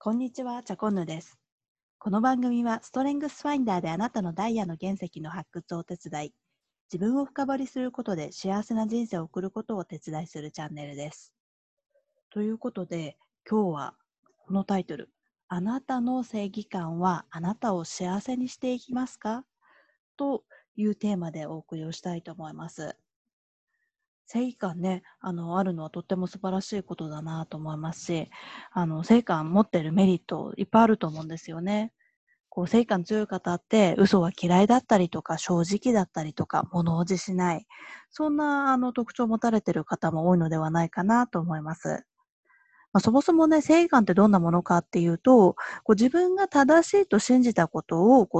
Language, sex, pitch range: Japanese, female, 170-240 Hz